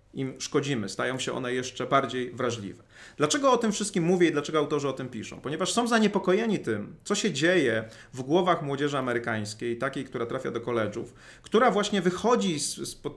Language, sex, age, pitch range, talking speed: Polish, male, 30-49, 125-175 Hz, 180 wpm